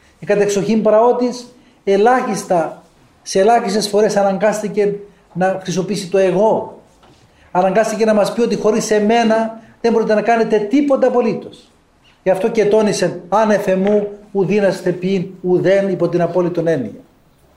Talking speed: 135 wpm